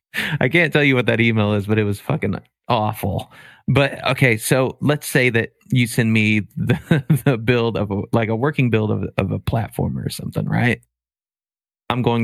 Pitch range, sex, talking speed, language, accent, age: 110-130 Hz, male, 190 wpm, English, American, 30-49